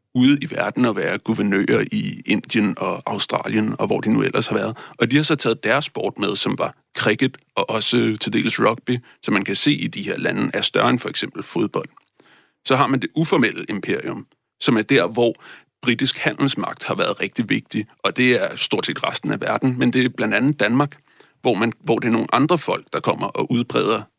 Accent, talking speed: native, 220 wpm